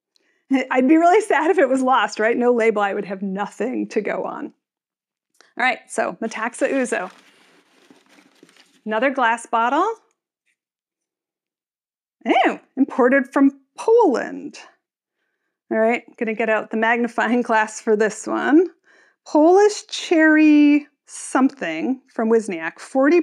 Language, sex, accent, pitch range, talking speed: English, female, American, 225-305 Hz, 120 wpm